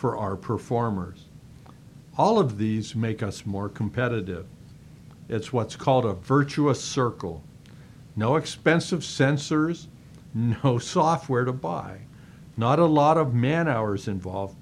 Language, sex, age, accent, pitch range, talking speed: English, male, 50-69, American, 110-145 Hz, 125 wpm